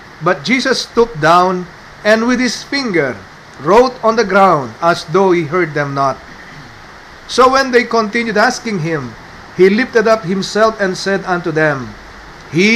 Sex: male